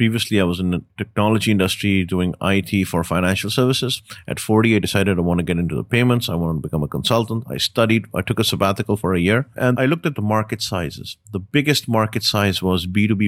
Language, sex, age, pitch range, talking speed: English, male, 30-49, 100-120 Hz, 230 wpm